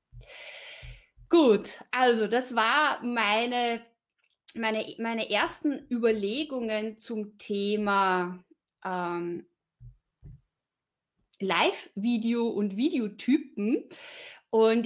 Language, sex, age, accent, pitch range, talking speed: German, female, 30-49, German, 210-255 Hz, 65 wpm